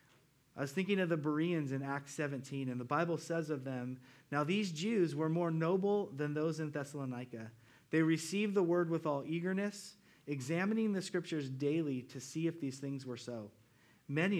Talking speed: 185 wpm